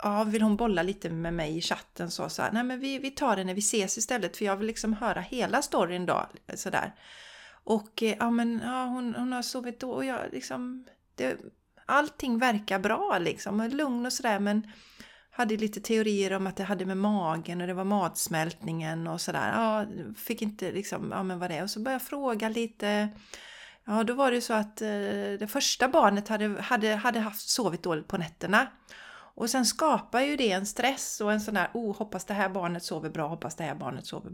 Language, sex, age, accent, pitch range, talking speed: Swedish, female, 40-59, native, 190-245 Hz, 215 wpm